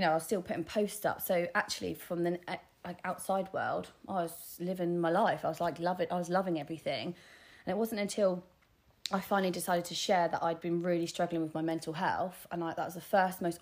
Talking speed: 240 wpm